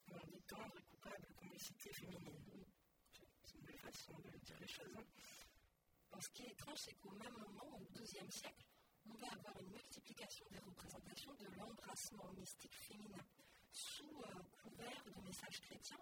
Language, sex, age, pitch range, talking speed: French, female, 40-59, 180-215 Hz, 170 wpm